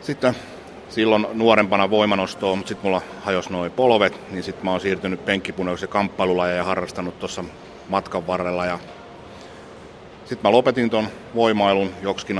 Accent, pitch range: native, 90-100 Hz